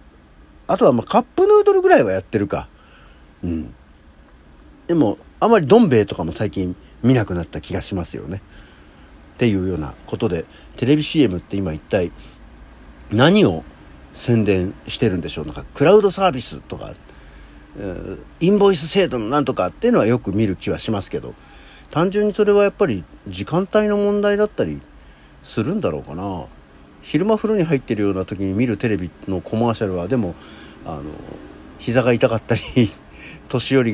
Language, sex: Japanese, male